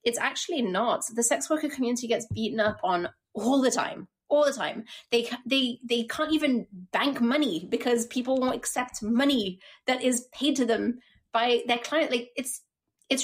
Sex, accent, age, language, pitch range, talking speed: female, British, 20-39, English, 215-270 Hz, 180 wpm